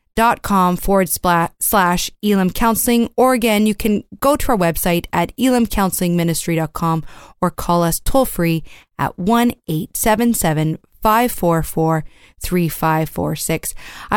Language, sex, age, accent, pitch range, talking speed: English, female, 30-49, American, 180-235 Hz, 100 wpm